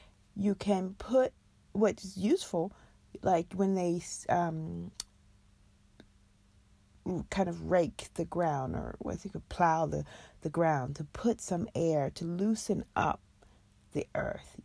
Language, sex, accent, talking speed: English, female, American, 125 wpm